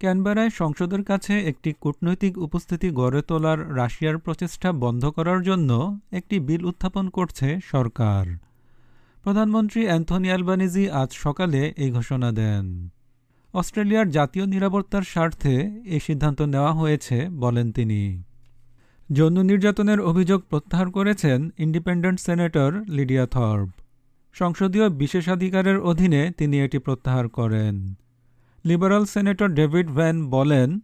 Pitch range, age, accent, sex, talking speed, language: 130-185 Hz, 50-69, native, male, 70 wpm, Bengali